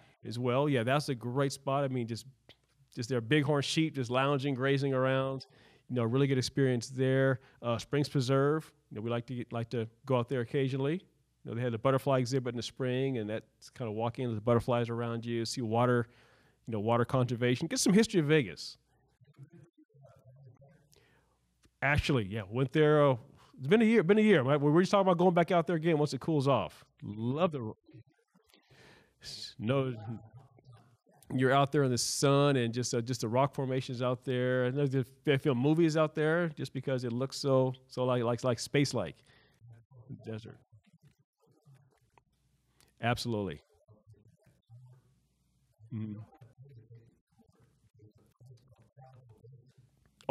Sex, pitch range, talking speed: male, 120-140 Hz, 160 wpm